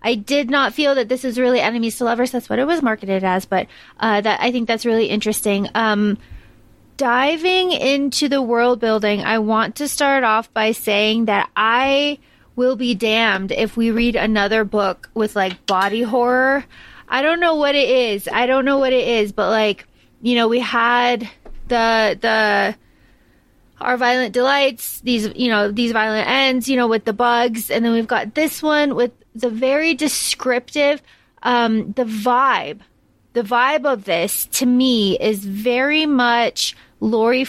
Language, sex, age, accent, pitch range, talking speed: English, female, 20-39, American, 215-255 Hz, 175 wpm